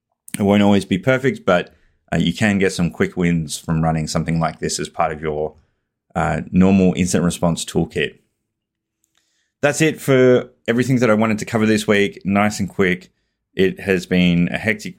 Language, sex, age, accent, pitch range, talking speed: English, male, 20-39, Australian, 85-100 Hz, 185 wpm